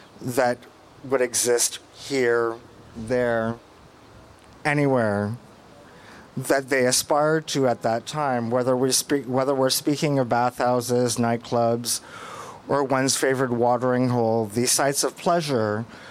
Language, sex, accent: English, male, American